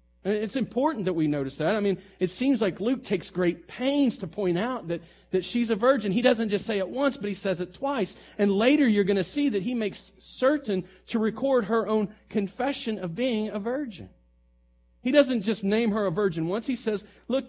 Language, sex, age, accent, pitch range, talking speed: English, male, 40-59, American, 150-215 Hz, 220 wpm